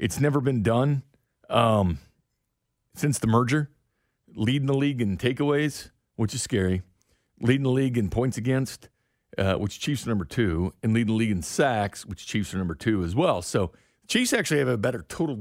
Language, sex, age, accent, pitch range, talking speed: English, male, 50-69, American, 100-130 Hz, 185 wpm